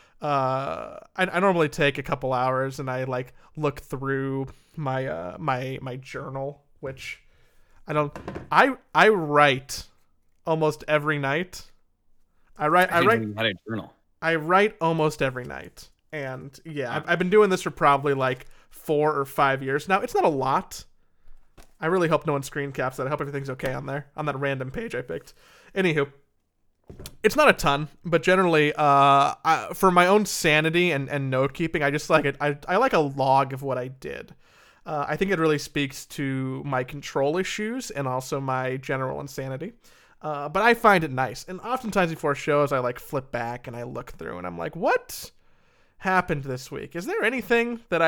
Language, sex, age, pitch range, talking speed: English, male, 30-49, 135-170 Hz, 185 wpm